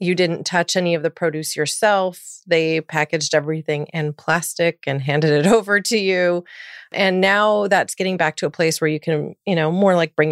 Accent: American